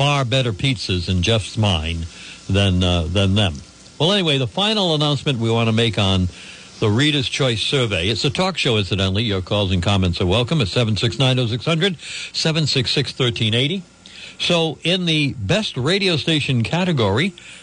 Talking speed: 155 wpm